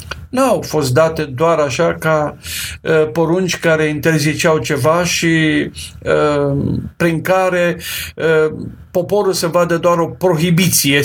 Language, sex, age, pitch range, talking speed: Romanian, male, 50-69, 125-170 Hz, 110 wpm